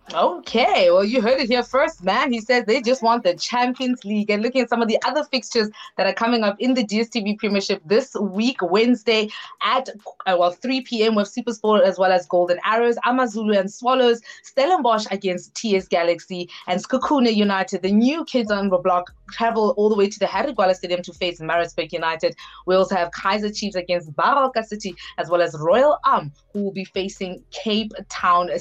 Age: 20-39